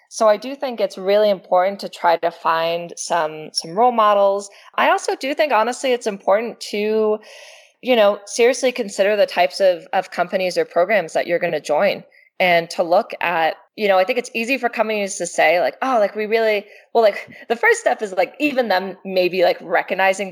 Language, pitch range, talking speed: English, 175-235 Hz, 205 wpm